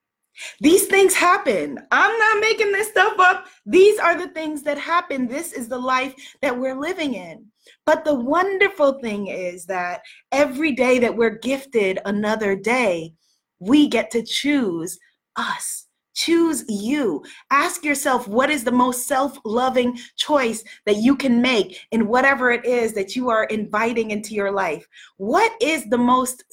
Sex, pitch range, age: female, 220-290 Hz, 20-39